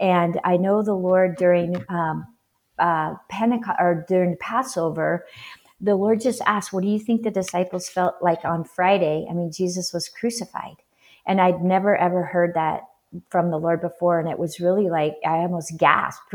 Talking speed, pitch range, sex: 180 wpm, 165-195 Hz, female